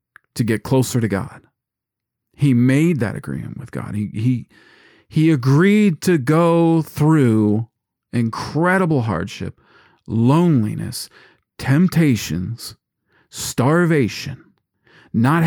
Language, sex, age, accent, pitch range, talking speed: English, male, 40-59, American, 115-155 Hz, 90 wpm